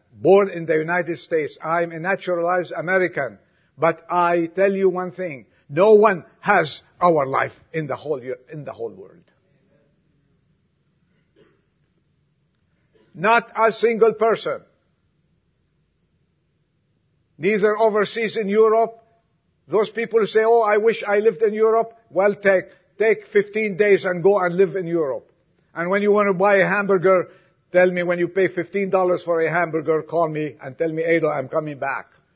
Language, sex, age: English, male, 50-69